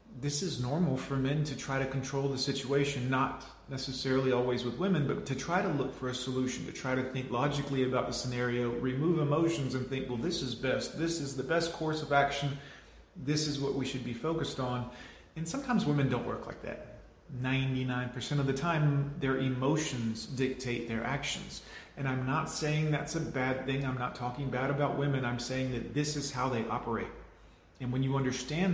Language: English